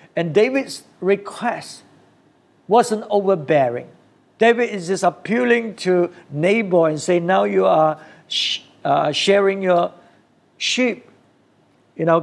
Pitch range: 145-190 Hz